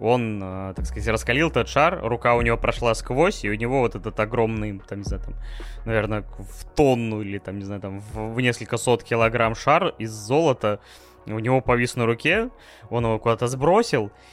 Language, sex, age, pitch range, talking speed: Russian, male, 20-39, 110-140 Hz, 190 wpm